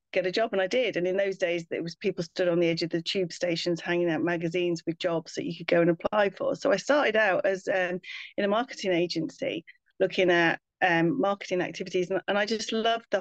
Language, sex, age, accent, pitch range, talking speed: English, female, 30-49, British, 175-195 Hz, 245 wpm